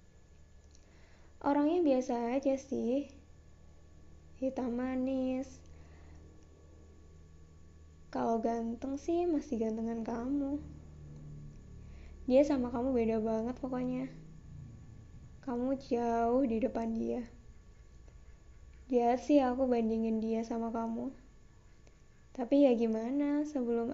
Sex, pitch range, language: female, 225-260 Hz, Indonesian